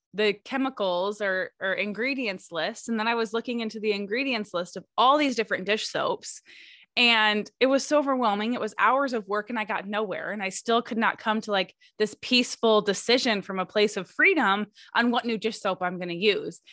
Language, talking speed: English, 215 wpm